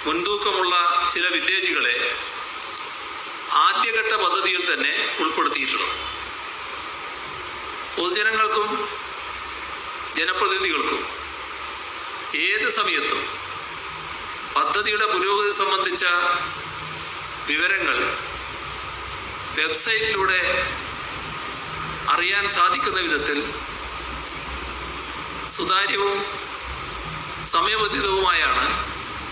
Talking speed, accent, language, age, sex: 40 wpm, native, Malayalam, 50-69, male